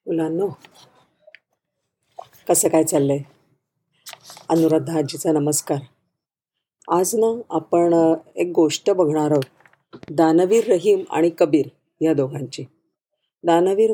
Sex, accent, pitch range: female, native, 160-210 Hz